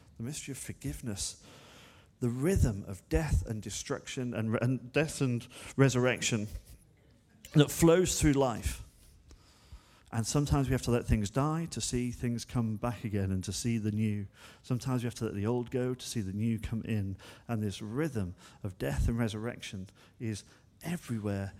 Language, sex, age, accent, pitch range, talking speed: English, male, 40-59, British, 100-120 Hz, 170 wpm